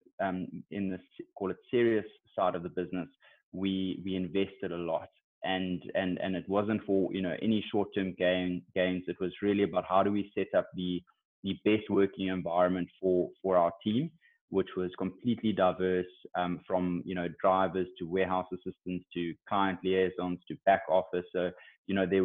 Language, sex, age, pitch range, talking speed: English, male, 20-39, 90-100 Hz, 185 wpm